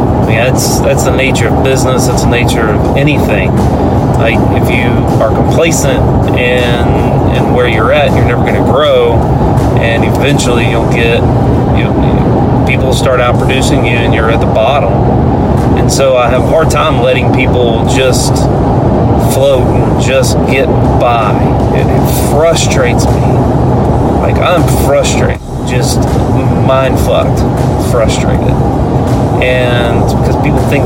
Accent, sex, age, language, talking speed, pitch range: American, male, 30-49, English, 140 wpm, 120-135 Hz